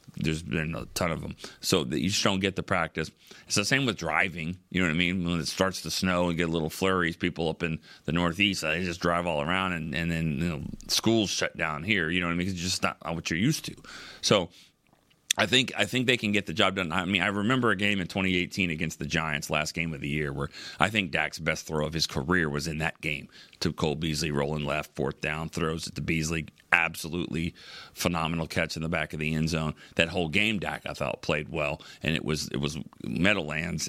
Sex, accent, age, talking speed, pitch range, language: male, American, 40-59, 250 wpm, 80-100 Hz, English